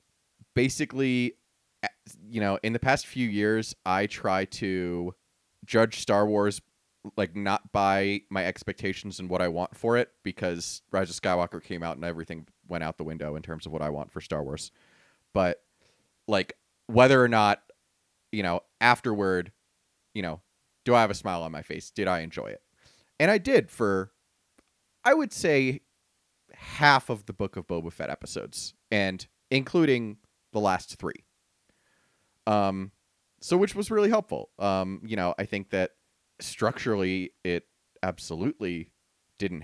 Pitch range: 90-110 Hz